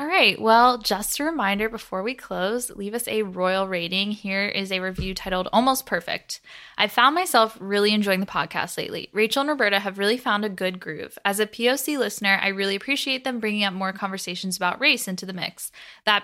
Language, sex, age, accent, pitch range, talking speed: English, female, 10-29, American, 185-220 Hz, 205 wpm